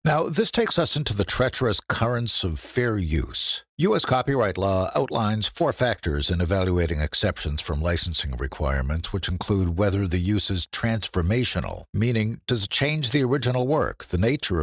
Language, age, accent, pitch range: English, 60-79, American, 85-120 Hz